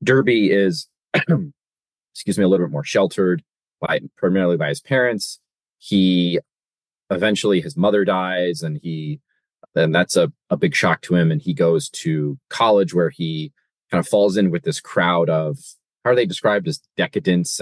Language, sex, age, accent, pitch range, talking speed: English, male, 30-49, American, 80-105 Hz, 170 wpm